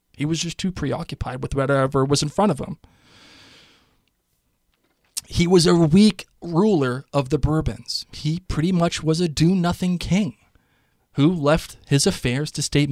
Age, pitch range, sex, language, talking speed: 20-39, 120-150 Hz, male, English, 155 wpm